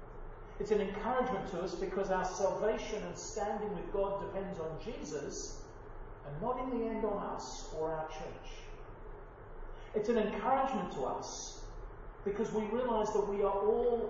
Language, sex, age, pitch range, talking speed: English, male, 40-59, 165-230 Hz, 160 wpm